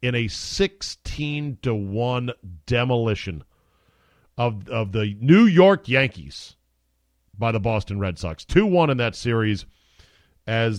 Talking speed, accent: 110 wpm, American